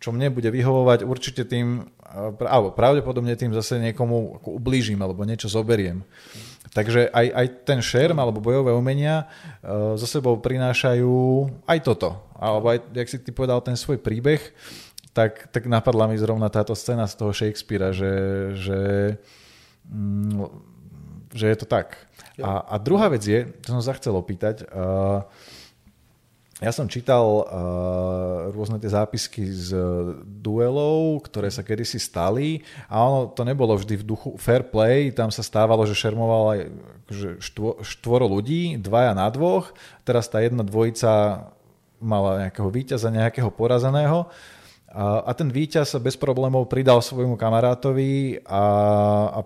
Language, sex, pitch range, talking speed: Slovak, male, 105-125 Hz, 150 wpm